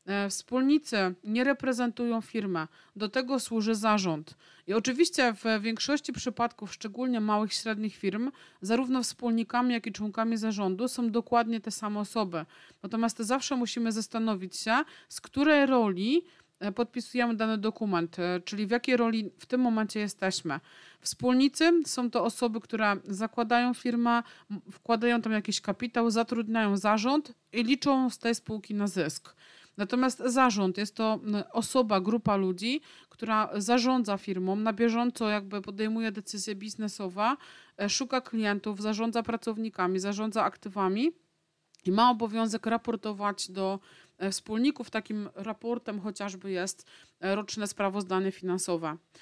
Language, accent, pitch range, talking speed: Polish, native, 200-245 Hz, 125 wpm